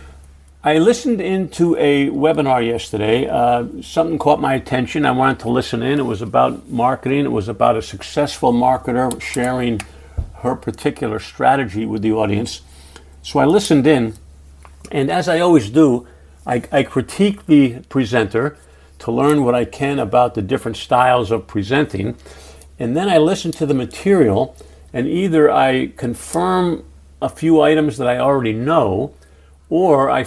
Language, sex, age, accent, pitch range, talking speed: English, male, 50-69, American, 105-145 Hz, 155 wpm